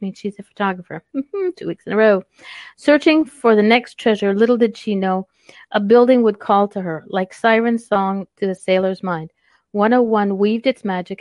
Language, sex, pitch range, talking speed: English, female, 185-230 Hz, 185 wpm